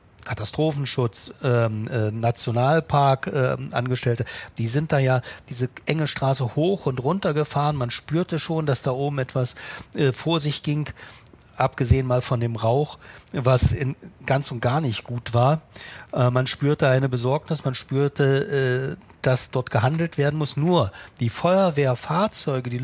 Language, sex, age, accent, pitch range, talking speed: German, male, 40-59, German, 125-150 Hz, 150 wpm